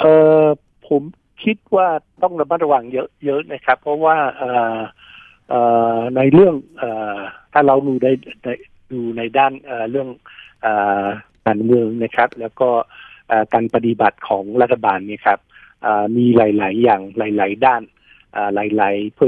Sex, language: male, Thai